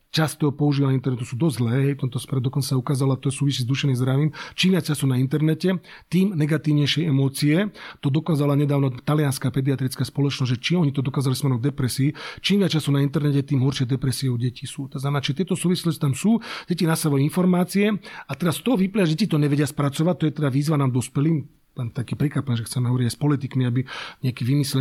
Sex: male